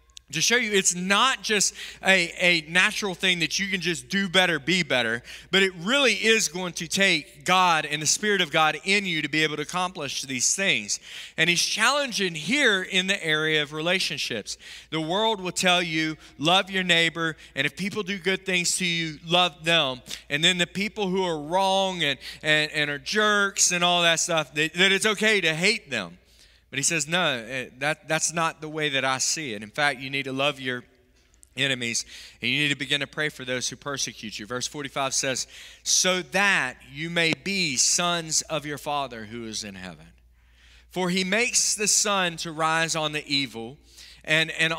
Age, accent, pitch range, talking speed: 30-49, American, 145-190 Hz, 200 wpm